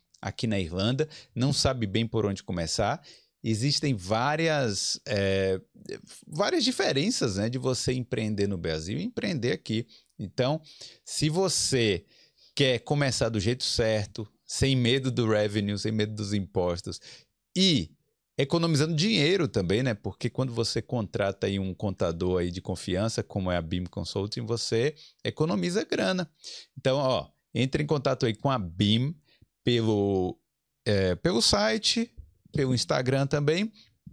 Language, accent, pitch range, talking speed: Portuguese, Brazilian, 100-145 Hz, 135 wpm